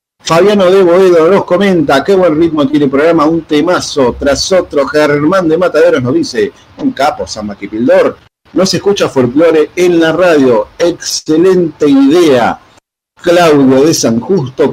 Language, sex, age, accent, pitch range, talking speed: Spanish, male, 50-69, Argentinian, 125-175 Hz, 150 wpm